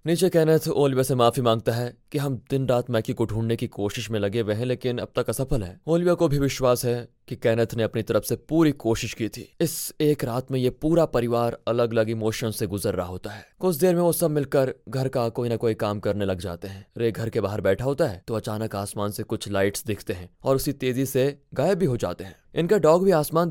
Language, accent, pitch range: Hindi, native, 110-150 Hz